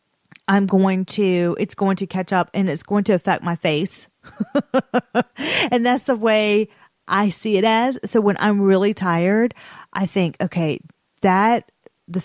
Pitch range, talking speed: 175-215 Hz, 160 wpm